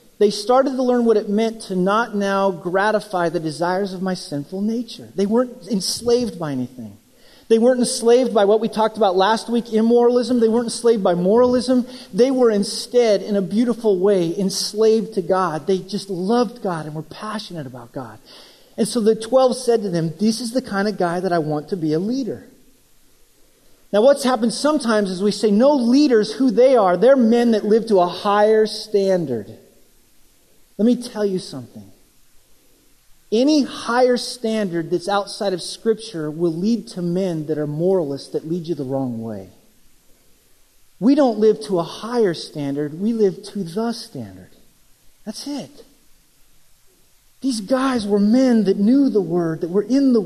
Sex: male